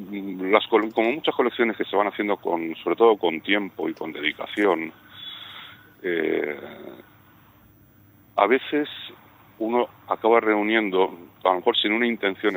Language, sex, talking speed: Spanish, male, 135 wpm